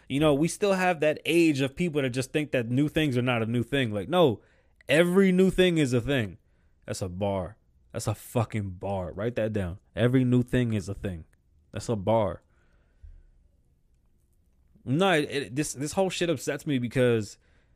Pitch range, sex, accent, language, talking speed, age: 110-145 Hz, male, American, English, 185 wpm, 20-39